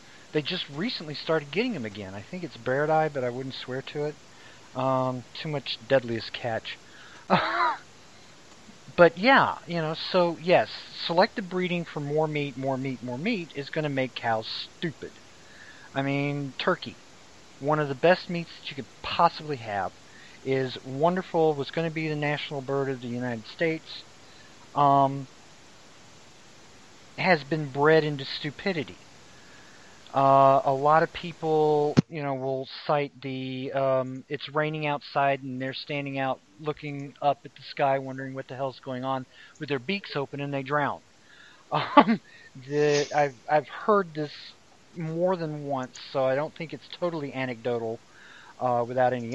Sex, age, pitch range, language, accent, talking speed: male, 40-59, 130-160 Hz, English, American, 155 wpm